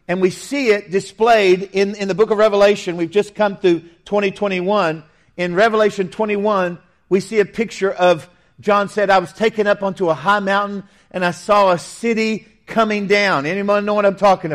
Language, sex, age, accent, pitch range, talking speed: English, male, 50-69, American, 180-225 Hz, 190 wpm